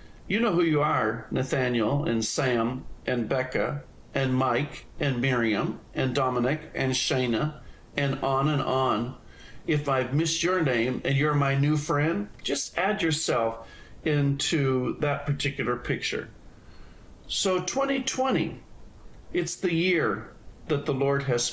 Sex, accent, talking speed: male, American, 135 wpm